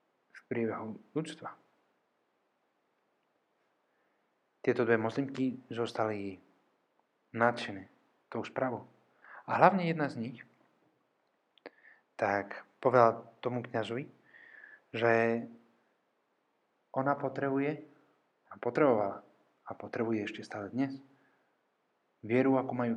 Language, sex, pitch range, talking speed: Czech, male, 115-135 Hz, 80 wpm